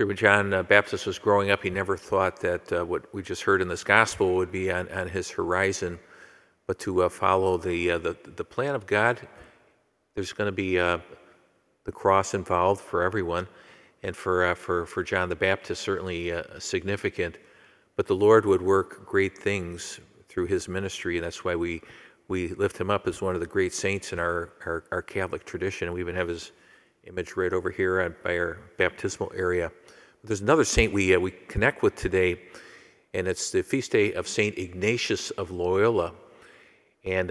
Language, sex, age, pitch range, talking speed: English, male, 50-69, 90-100 Hz, 195 wpm